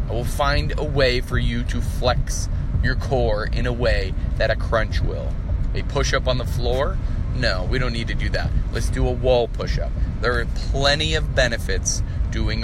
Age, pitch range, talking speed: 30-49, 90-115 Hz, 195 wpm